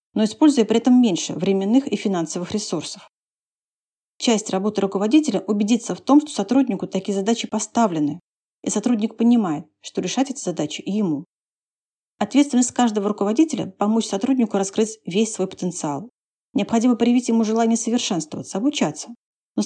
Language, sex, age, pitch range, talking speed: Russian, female, 40-59, 195-245 Hz, 135 wpm